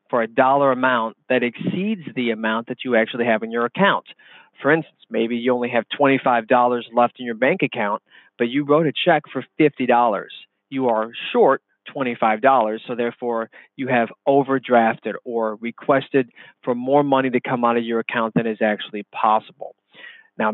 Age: 30-49